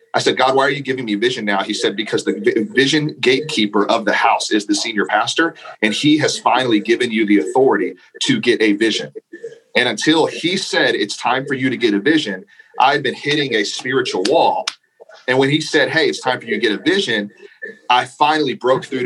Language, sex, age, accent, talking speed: English, male, 40-59, American, 220 wpm